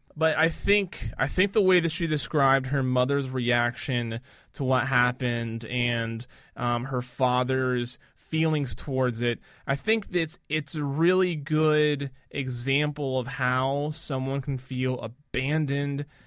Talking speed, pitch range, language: 135 wpm, 130-155 Hz, English